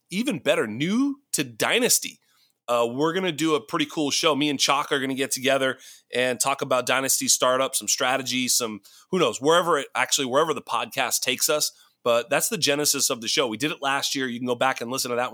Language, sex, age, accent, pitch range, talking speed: English, male, 30-49, American, 125-155 Hz, 235 wpm